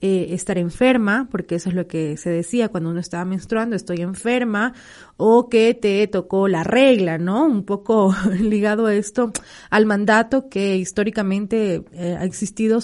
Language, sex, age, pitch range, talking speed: Spanish, female, 30-49, 180-220 Hz, 165 wpm